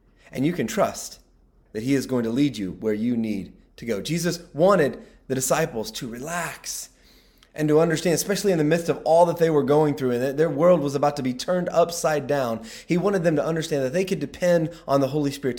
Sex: male